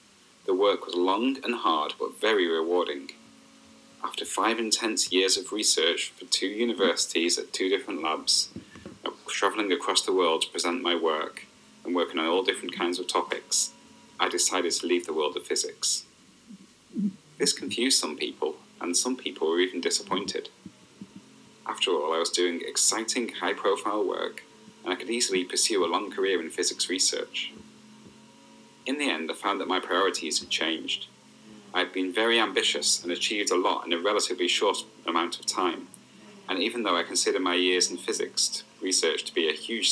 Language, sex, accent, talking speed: English, male, British, 175 wpm